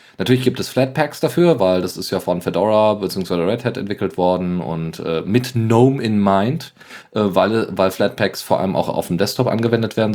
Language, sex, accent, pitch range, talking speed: German, male, German, 95-130 Hz, 200 wpm